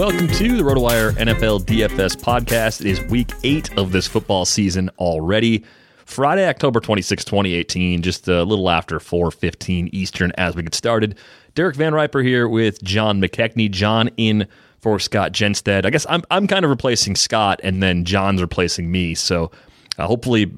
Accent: American